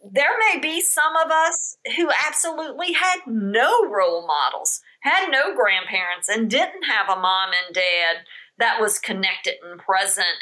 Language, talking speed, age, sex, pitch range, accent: English, 155 wpm, 50-69, female, 190-275 Hz, American